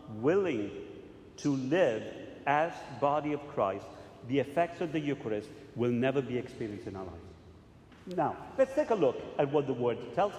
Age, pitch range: 50-69, 120-170 Hz